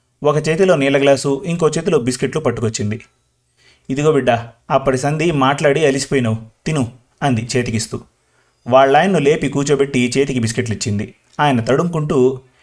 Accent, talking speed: native, 125 wpm